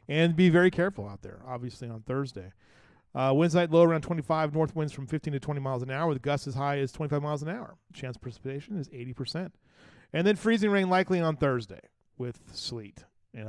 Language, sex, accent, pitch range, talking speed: English, male, American, 125-165 Hz, 220 wpm